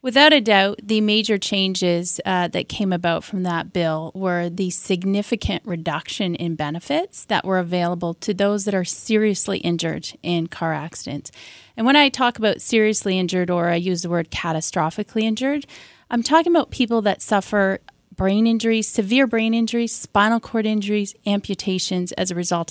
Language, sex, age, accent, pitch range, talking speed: English, female, 30-49, American, 180-225 Hz, 165 wpm